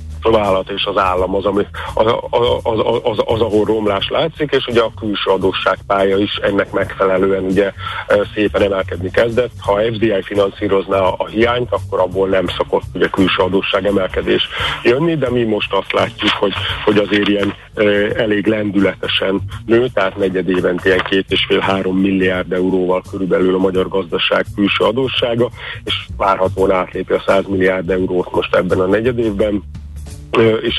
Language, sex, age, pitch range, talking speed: Hungarian, male, 50-69, 95-105 Hz, 160 wpm